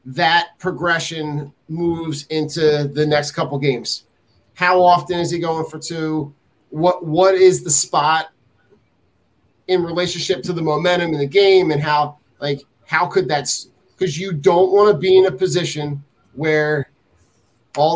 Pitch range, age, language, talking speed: 150-175 Hz, 30-49, English, 150 wpm